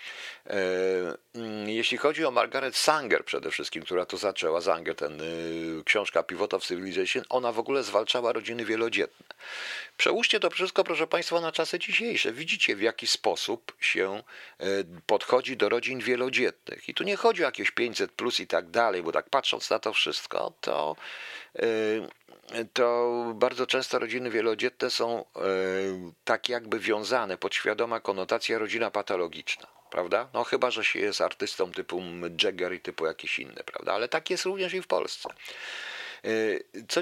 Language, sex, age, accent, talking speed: Polish, male, 50-69, native, 150 wpm